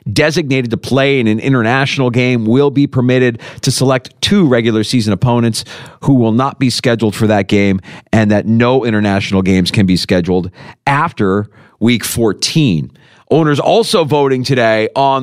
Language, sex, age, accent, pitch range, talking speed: English, male, 40-59, American, 105-135 Hz, 160 wpm